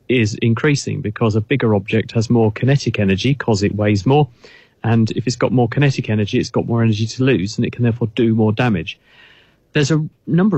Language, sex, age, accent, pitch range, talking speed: English, male, 40-59, British, 110-130 Hz, 210 wpm